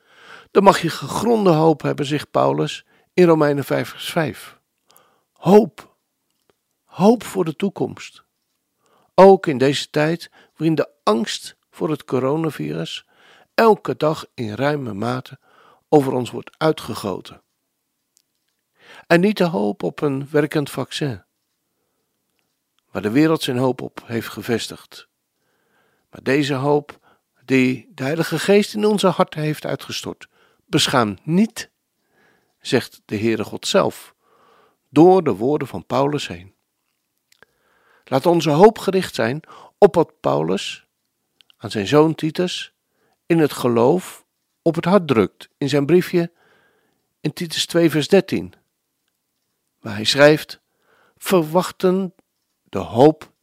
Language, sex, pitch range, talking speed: Dutch, male, 130-180 Hz, 125 wpm